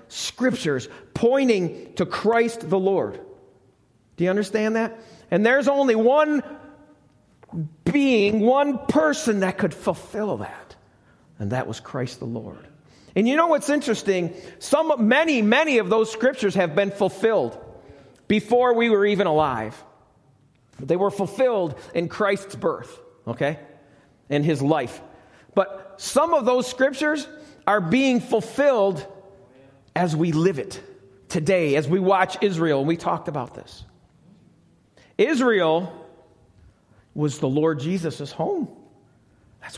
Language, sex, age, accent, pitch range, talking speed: English, male, 50-69, American, 170-250 Hz, 130 wpm